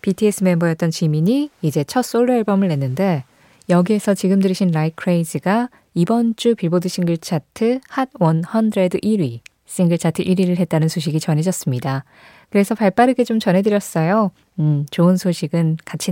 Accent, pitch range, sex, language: native, 160-215 Hz, female, Korean